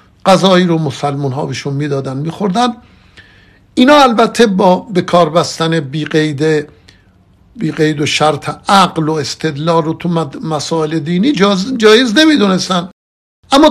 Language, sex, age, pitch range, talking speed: Persian, male, 60-79, 135-185 Hz, 125 wpm